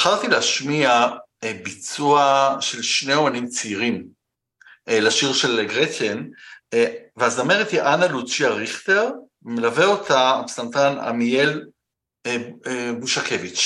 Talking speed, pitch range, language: 90 wpm, 100-135 Hz, Hebrew